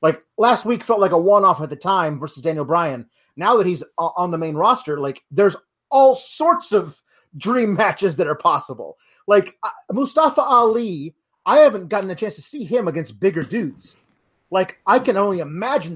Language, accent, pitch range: English, American, 155-205 Hz